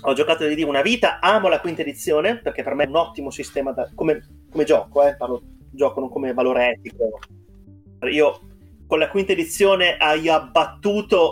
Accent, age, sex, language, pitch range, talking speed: native, 30-49, male, Italian, 130-180 Hz, 180 wpm